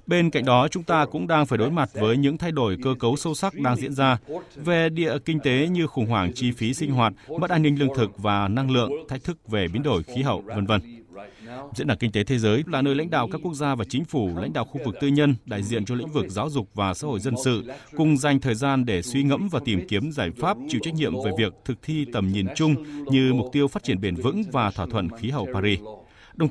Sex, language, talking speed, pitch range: male, Vietnamese, 265 wpm, 110-150 Hz